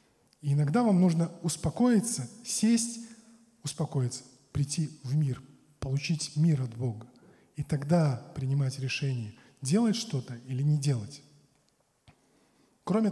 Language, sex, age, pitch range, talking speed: Russian, male, 20-39, 140-180 Hz, 105 wpm